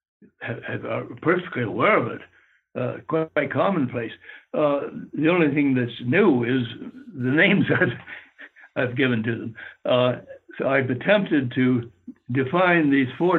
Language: English